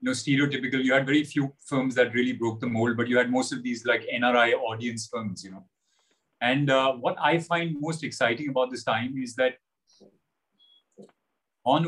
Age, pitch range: 30-49, 120-140 Hz